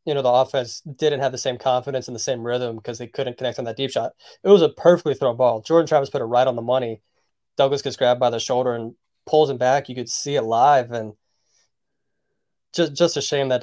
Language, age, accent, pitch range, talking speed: English, 20-39, American, 125-145 Hz, 245 wpm